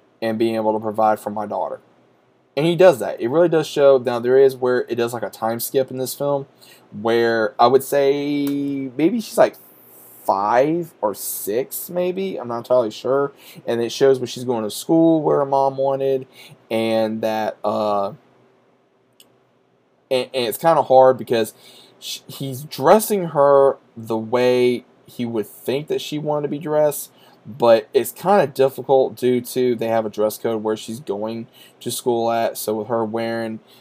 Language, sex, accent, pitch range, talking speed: English, male, American, 110-140 Hz, 185 wpm